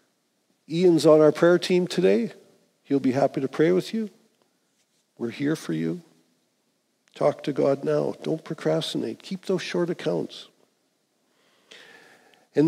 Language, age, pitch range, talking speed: English, 50-69, 140-190 Hz, 135 wpm